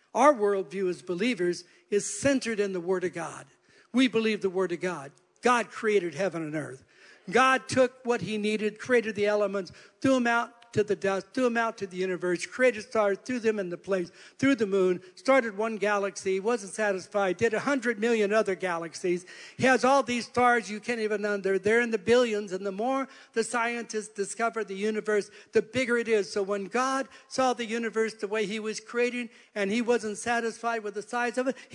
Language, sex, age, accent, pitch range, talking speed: English, male, 60-79, American, 200-245 Hz, 200 wpm